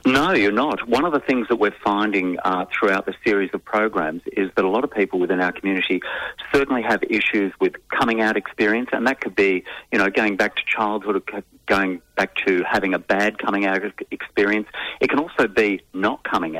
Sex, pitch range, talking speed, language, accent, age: male, 95-110 Hz, 205 wpm, English, Australian, 40-59